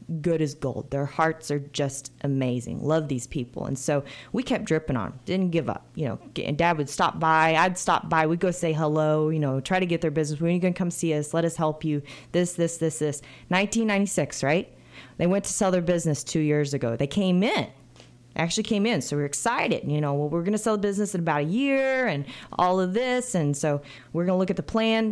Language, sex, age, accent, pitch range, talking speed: English, female, 30-49, American, 140-190 Hz, 245 wpm